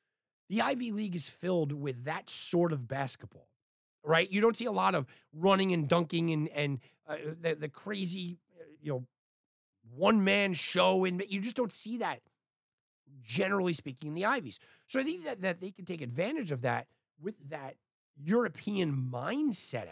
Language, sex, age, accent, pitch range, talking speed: English, male, 30-49, American, 135-190 Hz, 170 wpm